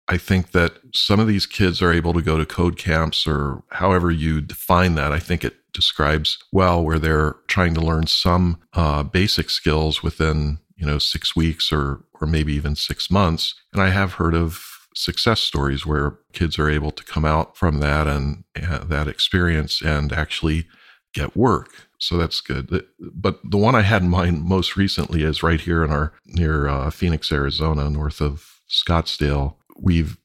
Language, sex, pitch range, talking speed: English, male, 75-90 Hz, 185 wpm